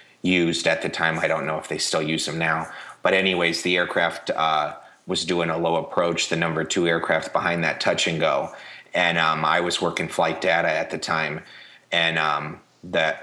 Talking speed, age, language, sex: 205 wpm, 30-49, English, male